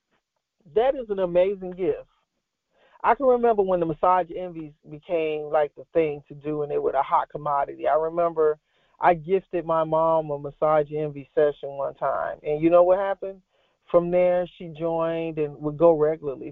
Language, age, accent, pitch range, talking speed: English, 40-59, American, 150-180 Hz, 180 wpm